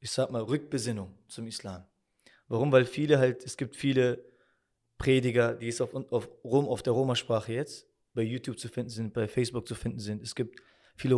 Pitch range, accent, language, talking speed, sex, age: 115-140 Hz, German, German, 185 wpm, male, 20-39